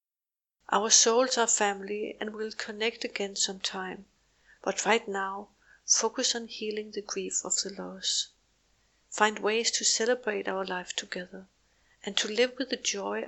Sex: female